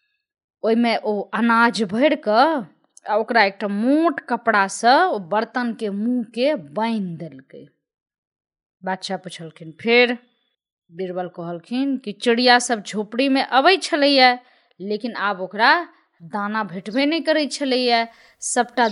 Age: 20-39